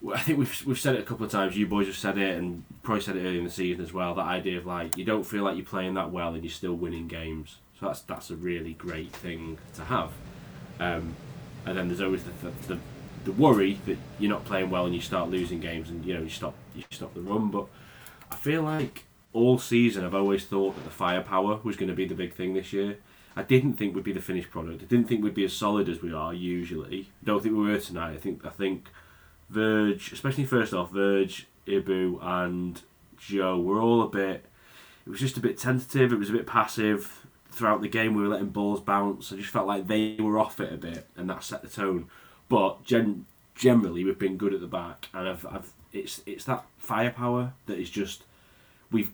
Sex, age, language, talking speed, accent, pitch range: male, 20-39, English, 240 wpm, British, 90-110 Hz